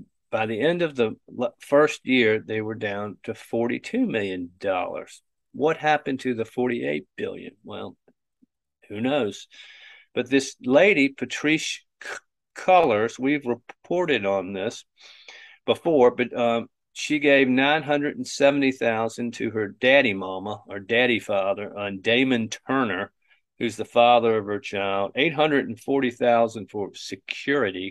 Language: English